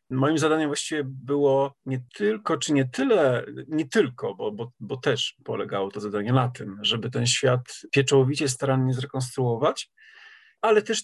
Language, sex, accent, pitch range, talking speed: Polish, male, native, 125-155 Hz, 150 wpm